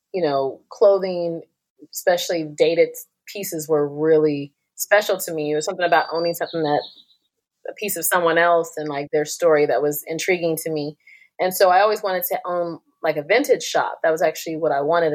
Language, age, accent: English, 30-49, American